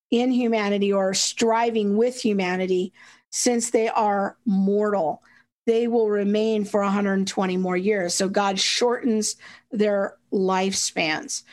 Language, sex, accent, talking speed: English, female, American, 115 wpm